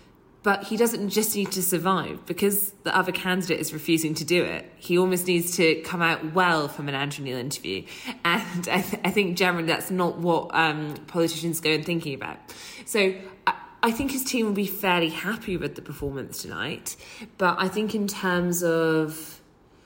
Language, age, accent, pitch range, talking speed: English, 20-39, British, 155-175 Hz, 190 wpm